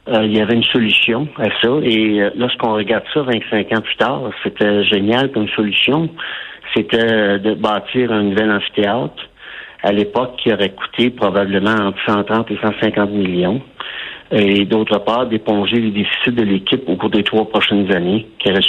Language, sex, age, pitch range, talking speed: French, male, 60-79, 105-120 Hz, 170 wpm